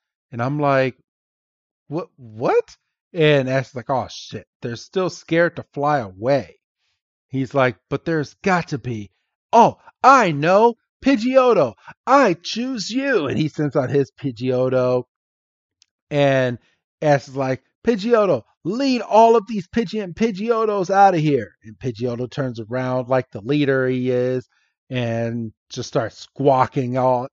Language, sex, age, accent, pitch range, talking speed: English, male, 40-59, American, 125-160 Hz, 135 wpm